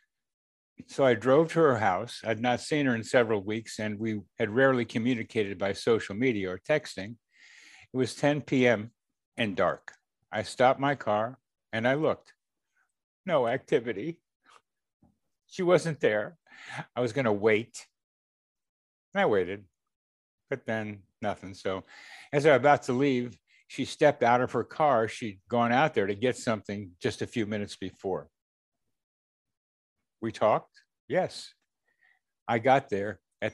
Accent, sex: American, male